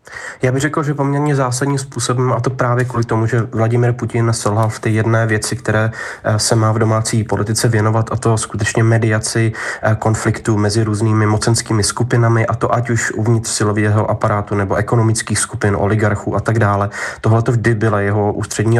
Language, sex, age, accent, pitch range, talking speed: Czech, male, 20-39, native, 100-110 Hz, 180 wpm